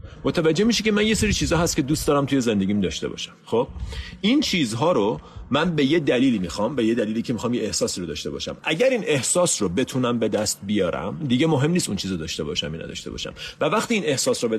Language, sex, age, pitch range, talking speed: Persian, male, 40-59, 105-150 Hz, 245 wpm